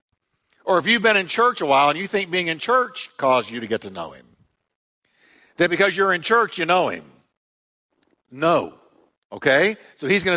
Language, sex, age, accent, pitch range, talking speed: English, male, 60-79, American, 140-195 Hz, 195 wpm